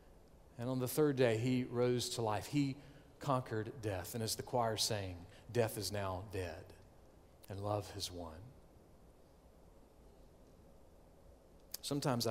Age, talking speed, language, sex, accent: 40-59, 125 wpm, English, male, American